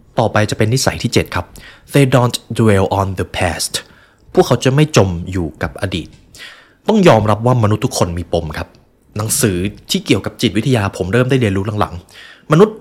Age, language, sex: 20-39, Thai, male